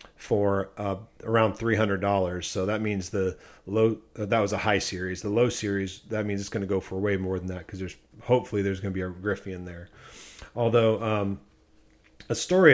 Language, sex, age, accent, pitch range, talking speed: English, male, 40-59, American, 105-125 Hz, 200 wpm